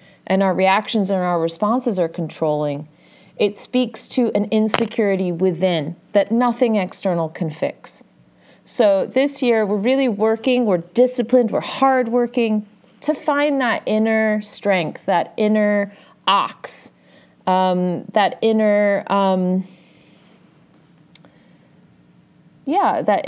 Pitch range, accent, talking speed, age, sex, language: 175-225 Hz, American, 110 wpm, 30-49, female, English